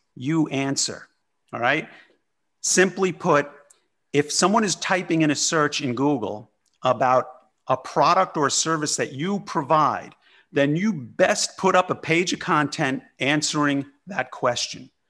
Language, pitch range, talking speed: English, 125-160 Hz, 145 wpm